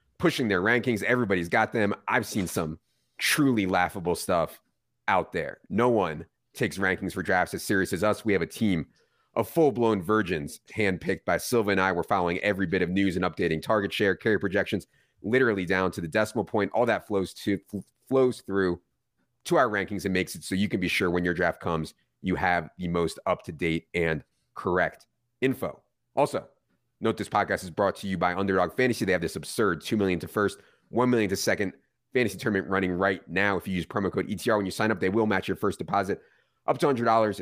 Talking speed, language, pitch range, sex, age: 205 wpm, English, 90-110 Hz, male, 30-49